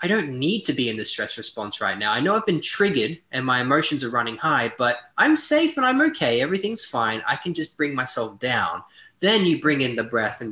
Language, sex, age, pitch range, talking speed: English, male, 20-39, 130-185 Hz, 245 wpm